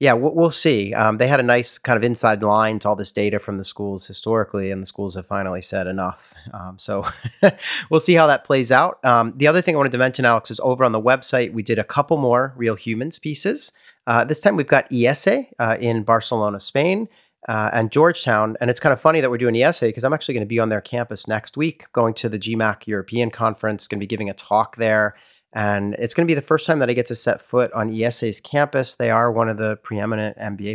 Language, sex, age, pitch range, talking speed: English, male, 40-59, 105-130 Hz, 250 wpm